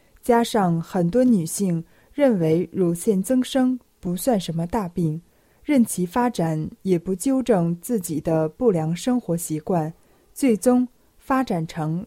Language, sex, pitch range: Chinese, female, 170-235 Hz